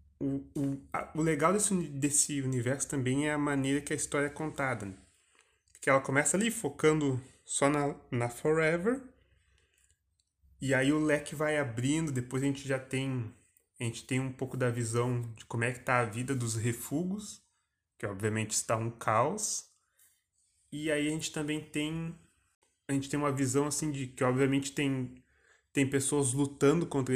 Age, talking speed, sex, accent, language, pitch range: 20-39, 170 wpm, male, Brazilian, Portuguese, 120-150 Hz